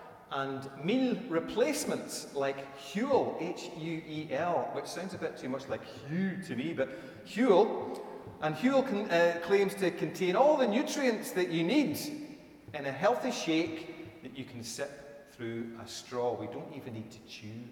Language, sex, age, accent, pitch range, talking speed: English, male, 40-59, British, 125-170 Hz, 165 wpm